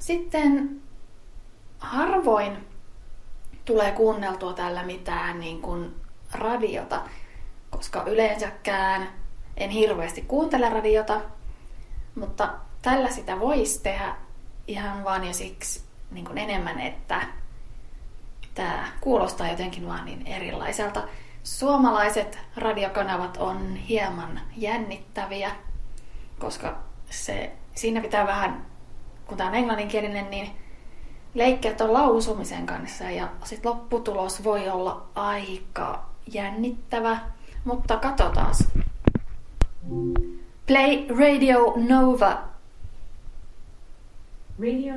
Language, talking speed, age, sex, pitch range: Finnish, 85 wpm, 20-39, female, 160-230 Hz